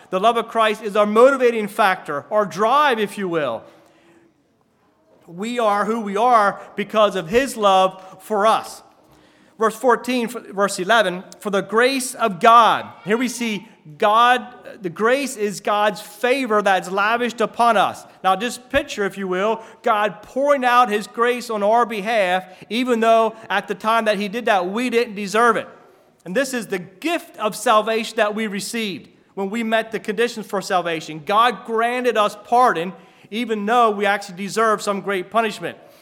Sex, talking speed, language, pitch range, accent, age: male, 170 wpm, English, 200-240 Hz, American, 40-59